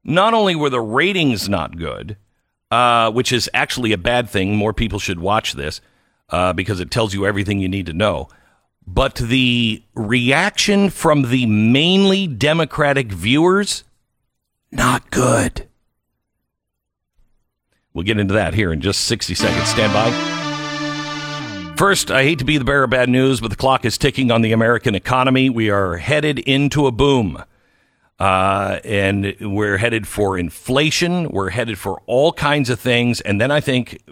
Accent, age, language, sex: American, 50-69, English, male